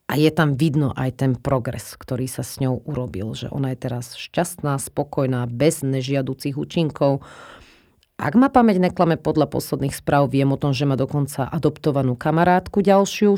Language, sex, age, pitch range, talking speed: Slovak, female, 30-49, 130-155 Hz, 165 wpm